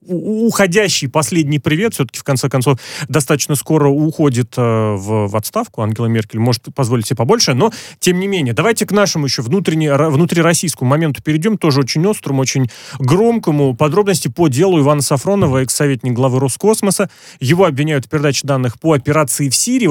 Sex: male